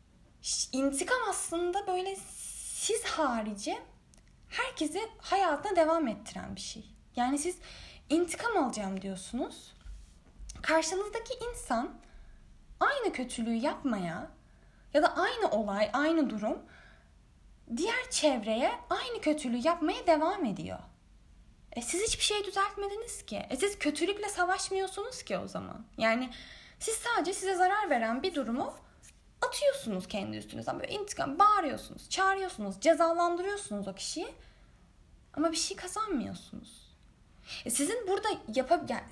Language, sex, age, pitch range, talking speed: Turkish, female, 10-29, 260-390 Hz, 110 wpm